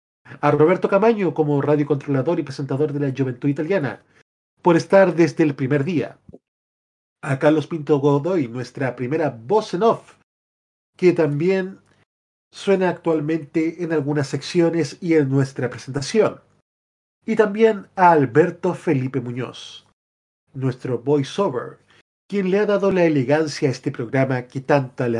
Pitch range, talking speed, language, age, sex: 135-180 Hz, 135 wpm, Spanish, 40-59, male